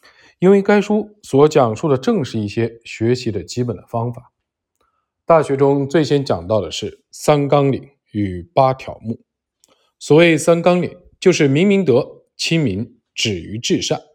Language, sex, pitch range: Chinese, male, 115-160 Hz